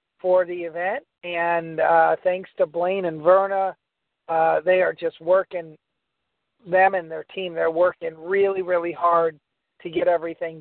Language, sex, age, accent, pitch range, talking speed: English, male, 50-69, American, 165-190 Hz, 155 wpm